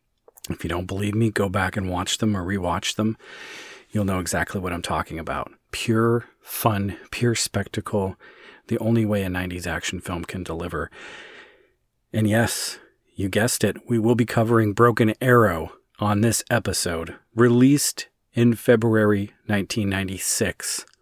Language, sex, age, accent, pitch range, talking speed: English, male, 40-59, American, 95-115 Hz, 145 wpm